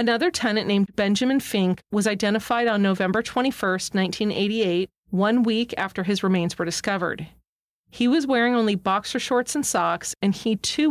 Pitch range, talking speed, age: 190-230 Hz, 160 wpm, 40-59